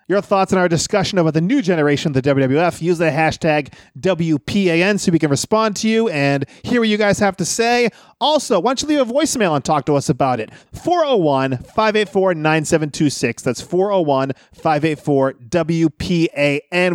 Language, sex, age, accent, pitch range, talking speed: English, male, 30-49, American, 140-190 Hz, 165 wpm